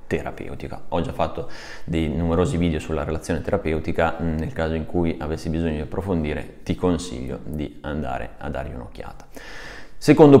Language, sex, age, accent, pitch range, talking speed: Italian, male, 30-49, native, 80-100 Hz, 150 wpm